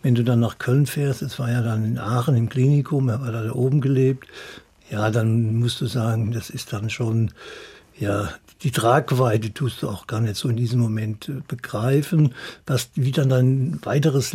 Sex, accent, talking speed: male, German, 195 wpm